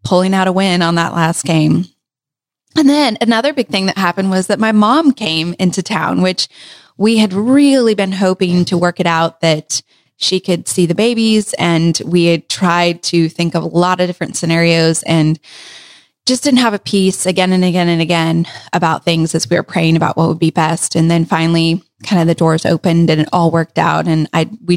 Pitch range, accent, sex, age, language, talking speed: 165-195 Hz, American, female, 20-39, English, 215 wpm